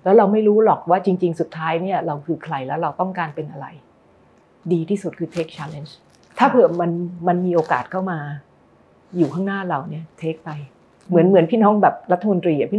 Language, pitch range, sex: Thai, 165-205 Hz, female